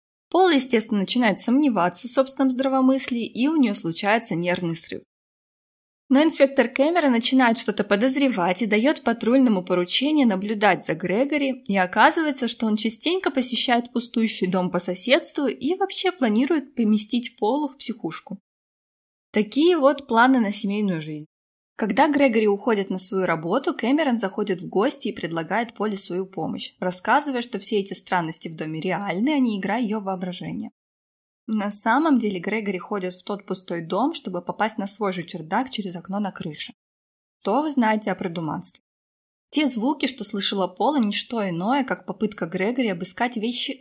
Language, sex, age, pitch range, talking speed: Russian, female, 20-39, 185-260 Hz, 155 wpm